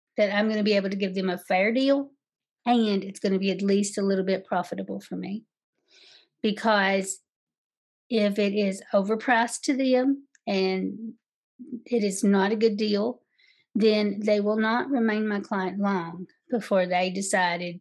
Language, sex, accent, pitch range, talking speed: English, female, American, 195-230 Hz, 170 wpm